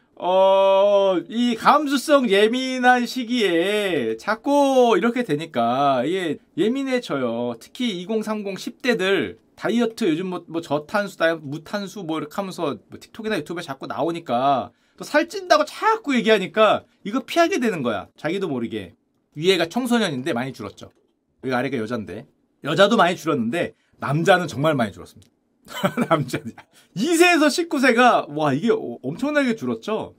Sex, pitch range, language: male, 160-245 Hz, Korean